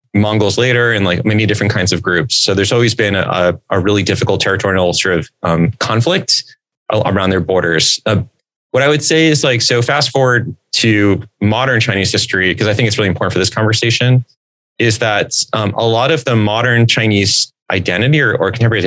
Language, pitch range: English, 95-115 Hz